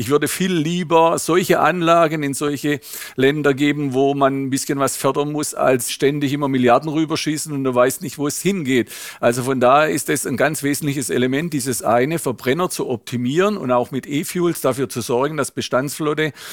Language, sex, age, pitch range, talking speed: German, male, 50-69, 130-155 Hz, 190 wpm